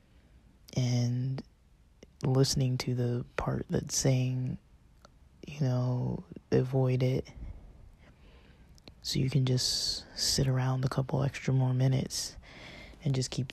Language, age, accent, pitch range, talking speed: English, 20-39, American, 90-135 Hz, 110 wpm